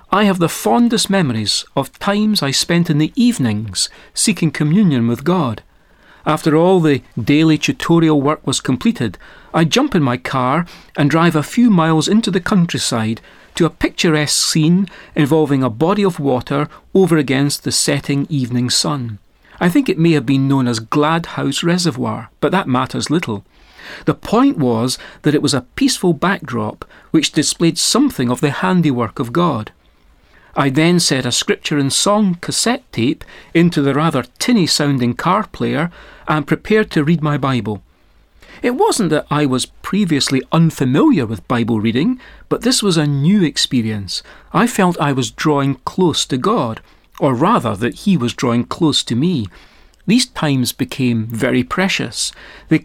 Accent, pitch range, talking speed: British, 130-180 Hz, 165 wpm